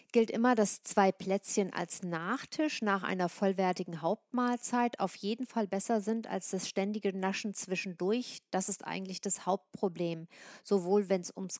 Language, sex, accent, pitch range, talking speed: German, female, German, 180-215 Hz, 155 wpm